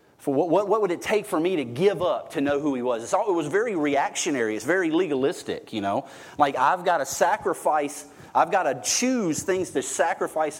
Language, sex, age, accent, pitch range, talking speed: English, male, 30-49, American, 115-150 Hz, 215 wpm